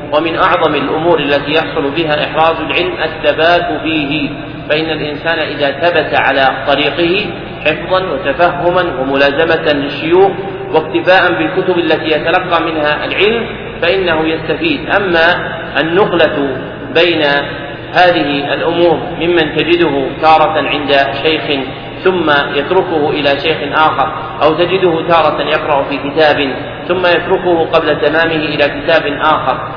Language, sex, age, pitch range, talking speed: Arabic, male, 40-59, 150-175 Hz, 115 wpm